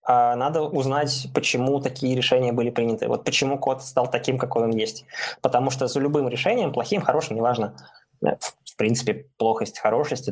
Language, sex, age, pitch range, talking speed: Russian, male, 20-39, 115-140 Hz, 155 wpm